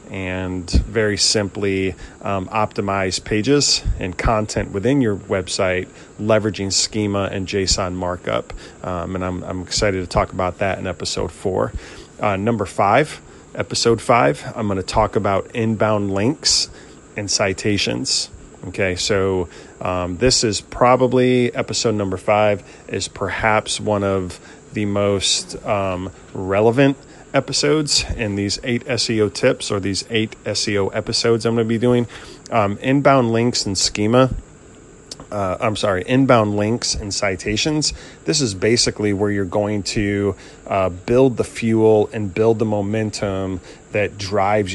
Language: English